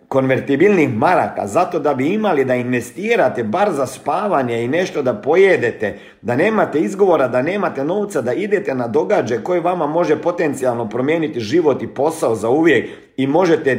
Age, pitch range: 50-69, 110-155 Hz